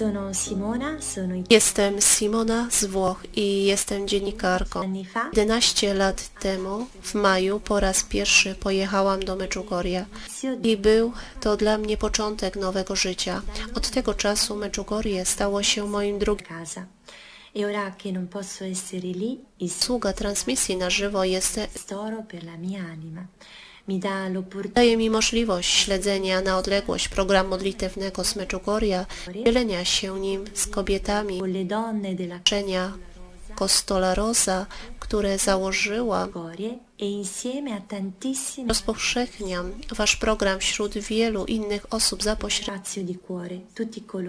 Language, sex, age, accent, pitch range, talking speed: Polish, female, 30-49, native, 190-215 Hz, 95 wpm